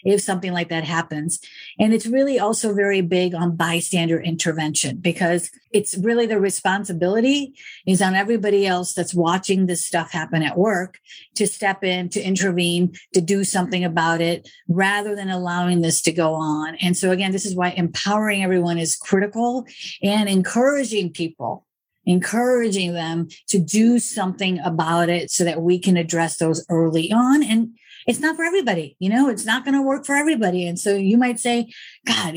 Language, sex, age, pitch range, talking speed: English, female, 50-69, 170-210 Hz, 175 wpm